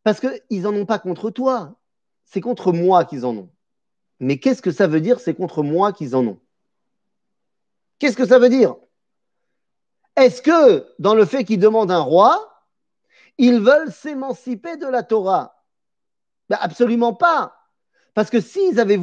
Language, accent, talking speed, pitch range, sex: French, French, 165 wpm, 180-255 Hz, male